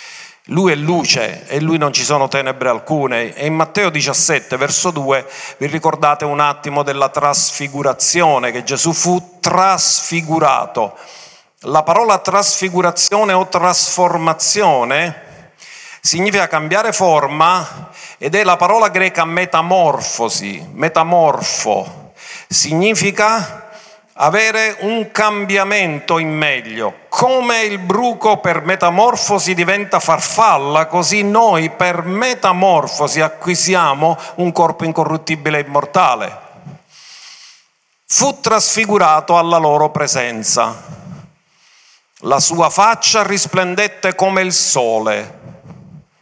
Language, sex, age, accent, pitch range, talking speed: Italian, male, 50-69, native, 150-190 Hz, 100 wpm